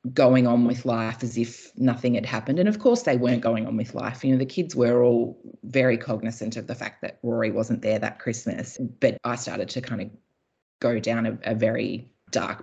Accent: Australian